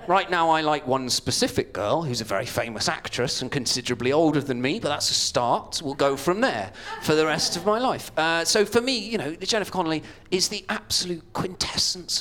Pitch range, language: 135-205 Hz, English